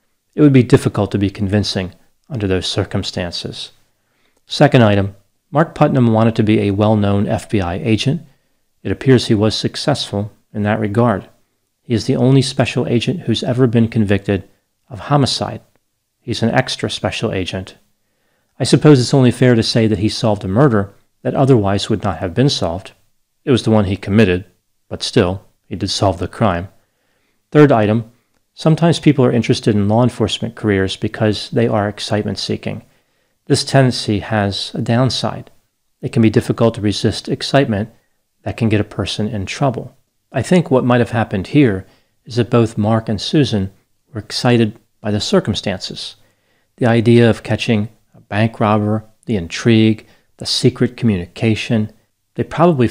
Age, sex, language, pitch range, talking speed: 40-59, male, English, 105-120 Hz, 160 wpm